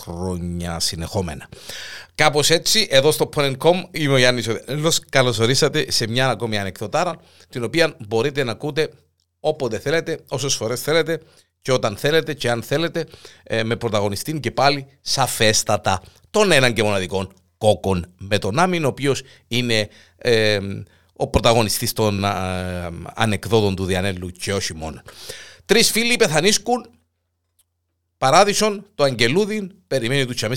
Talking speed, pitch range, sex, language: 135 wpm, 95-150 Hz, male, Greek